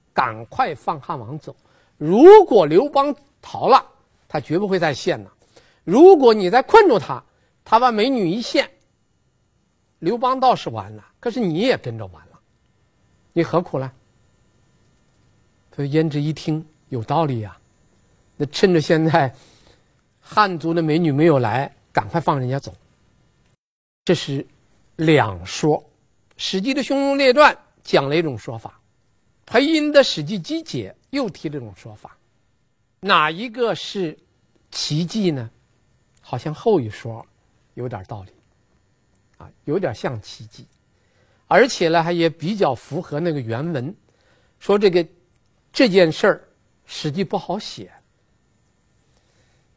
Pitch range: 115-185 Hz